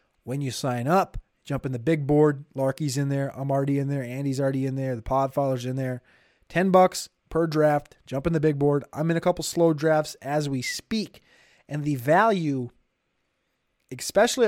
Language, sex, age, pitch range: English, male, 20-39, 140-165 Hz